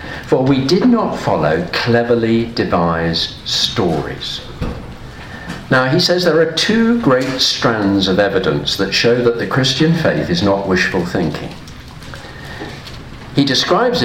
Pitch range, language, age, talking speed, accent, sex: 100-145 Hz, English, 50-69, 130 wpm, British, male